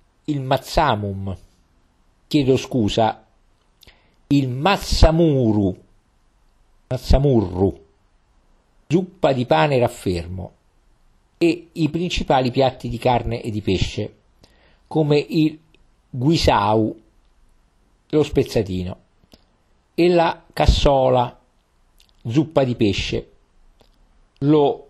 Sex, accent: male, native